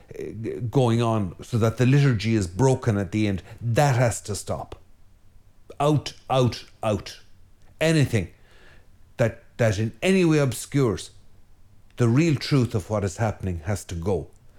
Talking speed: 145 wpm